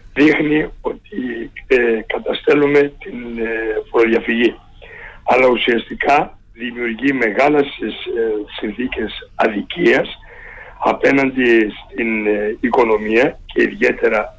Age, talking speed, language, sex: 60-79, 80 wpm, Greek, male